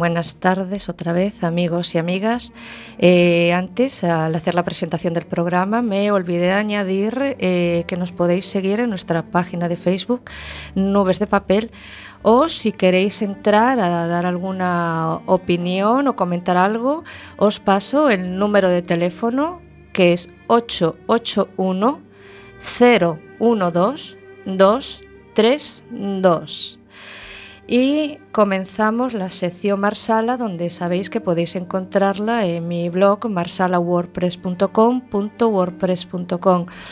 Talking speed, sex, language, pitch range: 105 wpm, female, Spanish, 175-210 Hz